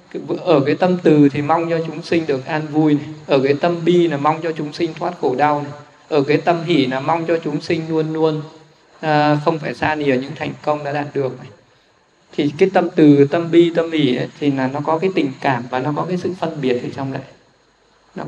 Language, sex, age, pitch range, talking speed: Vietnamese, male, 20-39, 145-170 Hz, 255 wpm